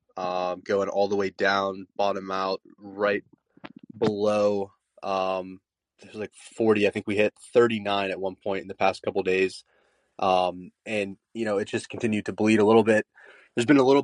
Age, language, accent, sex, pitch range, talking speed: 20-39, English, American, male, 95-110 Hz, 180 wpm